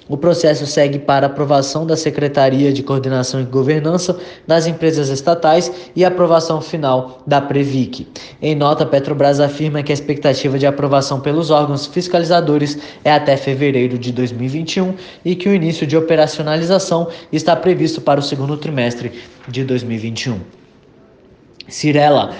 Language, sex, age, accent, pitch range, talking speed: Portuguese, male, 20-39, Brazilian, 135-160 Hz, 135 wpm